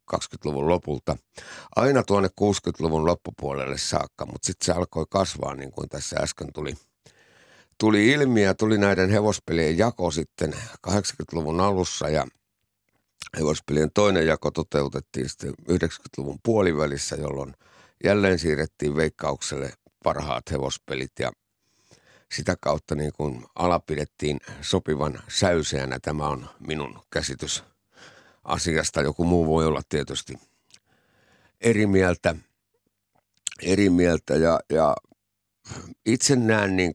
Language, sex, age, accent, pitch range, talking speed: Finnish, male, 60-79, native, 75-100 Hz, 110 wpm